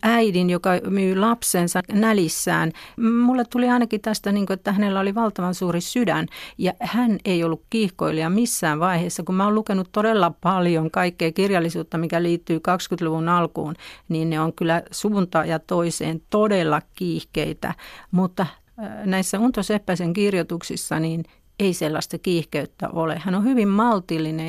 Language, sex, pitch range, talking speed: Finnish, female, 165-205 Hz, 140 wpm